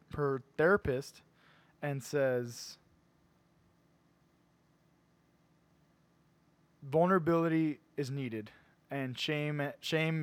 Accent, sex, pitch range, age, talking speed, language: American, male, 135-165 Hz, 20-39, 60 wpm, English